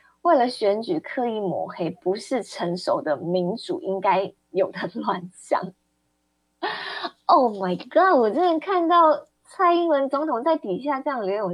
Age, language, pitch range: 20-39, Chinese, 180-275 Hz